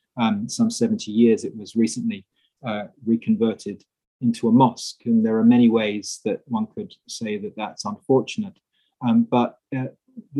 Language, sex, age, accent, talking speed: English, male, 30-49, British, 155 wpm